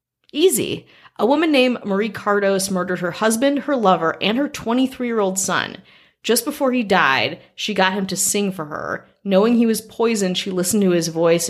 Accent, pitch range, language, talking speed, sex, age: American, 160-210 Hz, English, 185 wpm, female, 30-49